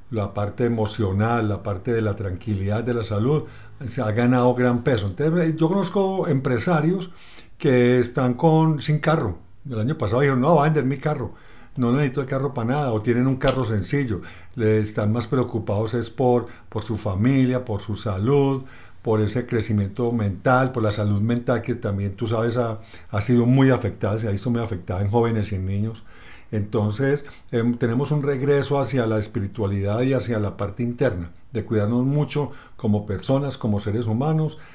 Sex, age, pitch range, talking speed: male, 50-69, 105-135 Hz, 180 wpm